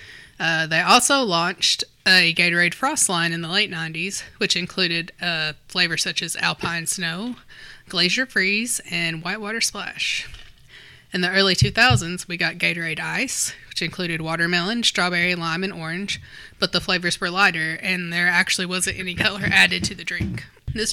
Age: 20-39